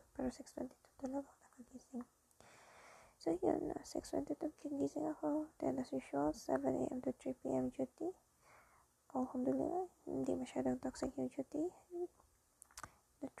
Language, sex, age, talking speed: Filipino, female, 20-39, 115 wpm